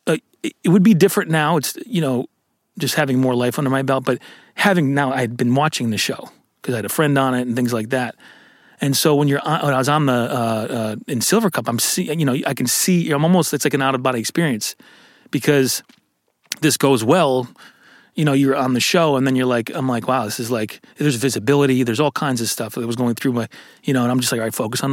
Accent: American